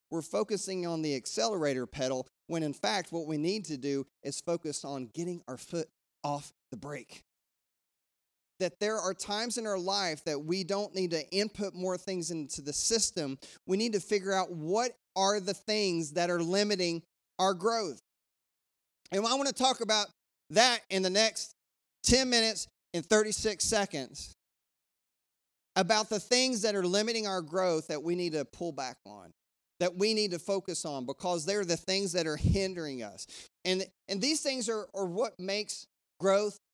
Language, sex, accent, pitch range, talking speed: English, male, American, 160-200 Hz, 175 wpm